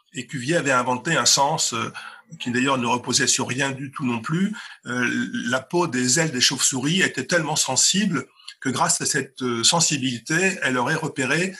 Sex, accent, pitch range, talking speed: male, French, 130-175 Hz, 170 wpm